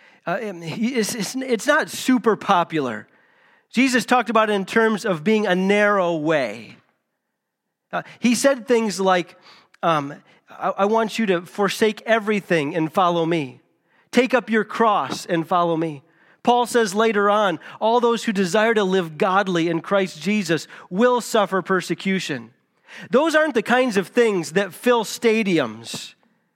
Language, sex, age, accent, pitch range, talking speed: English, male, 40-59, American, 180-235 Hz, 150 wpm